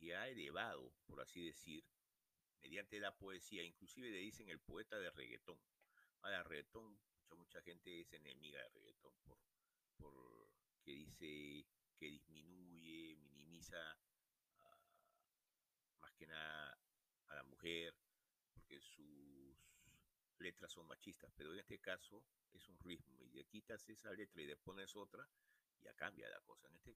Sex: male